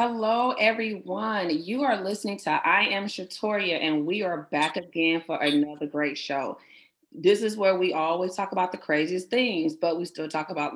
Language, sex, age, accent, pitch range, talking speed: English, female, 30-49, American, 155-205 Hz, 185 wpm